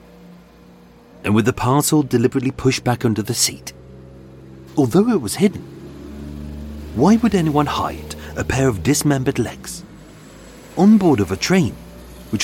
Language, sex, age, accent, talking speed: English, male, 40-59, British, 140 wpm